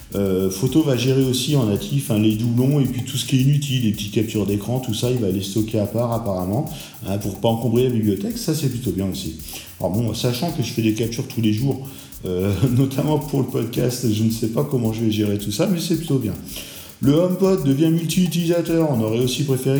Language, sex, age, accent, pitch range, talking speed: French, male, 50-69, French, 105-140 Hz, 240 wpm